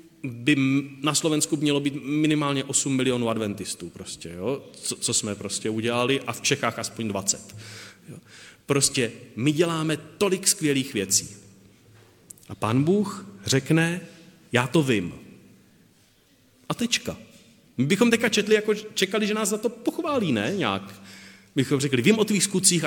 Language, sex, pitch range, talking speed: Slovak, male, 110-170 Hz, 145 wpm